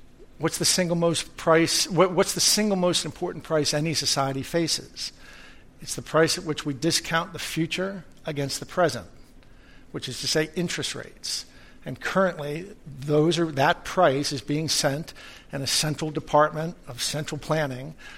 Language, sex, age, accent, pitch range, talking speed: English, male, 60-79, American, 145-170 Hz, 170 wpm